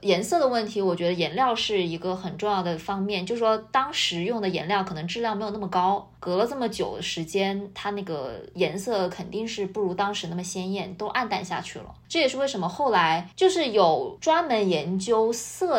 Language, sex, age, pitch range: Chinese, female, 20-39, 180-235 Hz